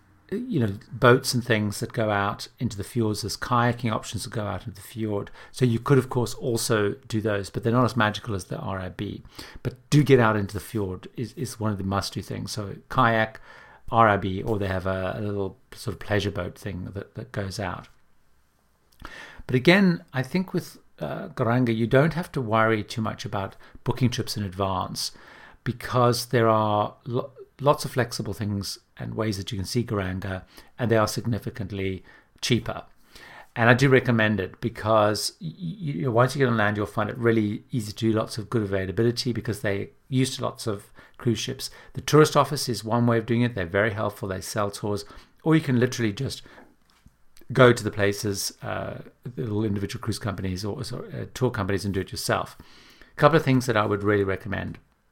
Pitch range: 100-125 Hz